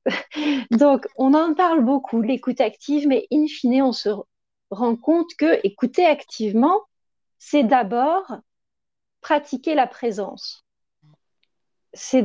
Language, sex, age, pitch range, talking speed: French, female, 40-59, 230-305 Hz, 115 wpm